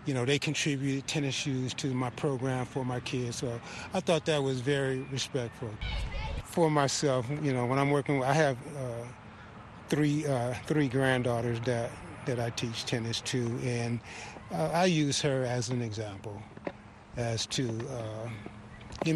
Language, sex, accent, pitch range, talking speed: English, male, American, 125-190 Hz, 160 wpm